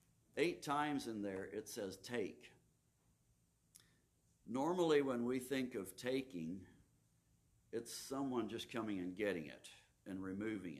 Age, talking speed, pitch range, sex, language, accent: 60-79, 120 wpm, 90-125 Hz, male, English, American